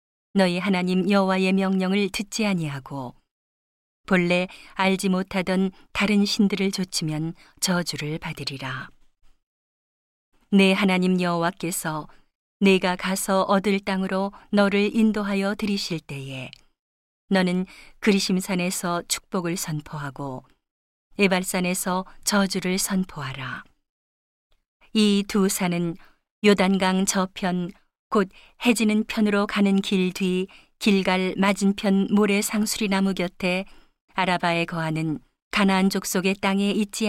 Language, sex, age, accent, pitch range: Korean, female, 40-59, native, 175-200 Hz